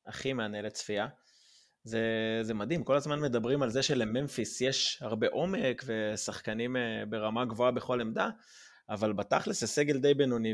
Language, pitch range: Hebrew, 110-130 Hz